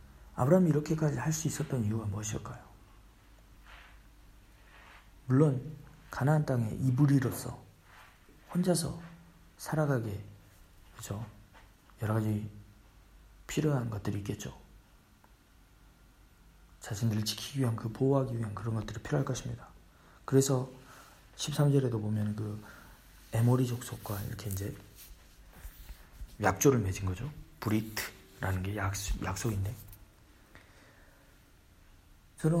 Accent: native